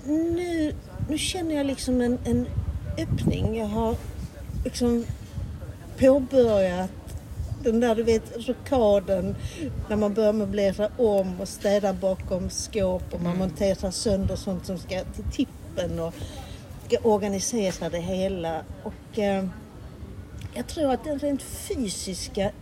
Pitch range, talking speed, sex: 170-245 Hz, 120 wpm, female